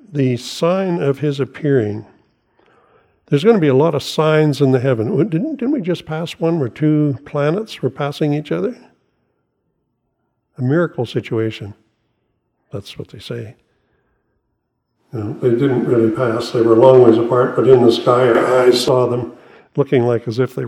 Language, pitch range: English, 115-150 Hz